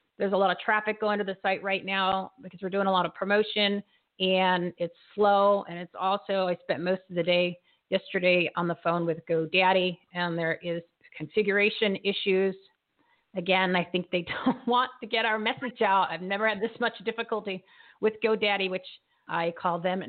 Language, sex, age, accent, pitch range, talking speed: English, female, 40-59, American, 175-215 Hz, 190 wpm